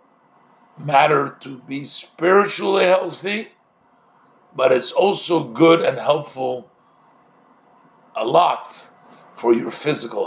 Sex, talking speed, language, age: male, 95 wpm, English, 50-69